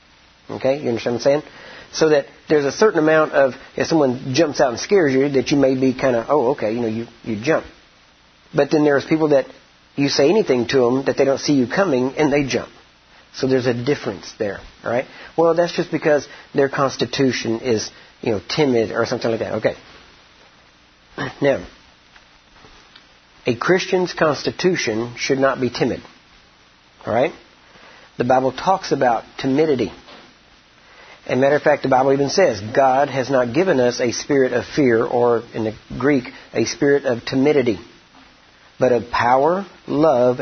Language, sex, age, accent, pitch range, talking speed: English, male, 50-69, American, 120-155 Hz, 175 wpm